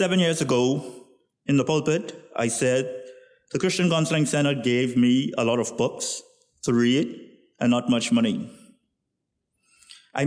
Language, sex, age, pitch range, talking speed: English, male, 50-69, 130-175 Hz, 145 wpm